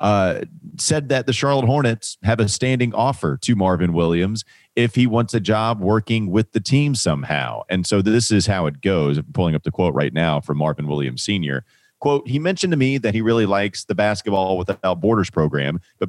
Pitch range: 85-105 Hz